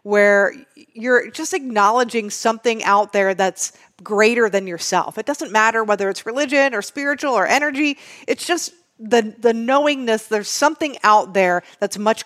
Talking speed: 155 wpm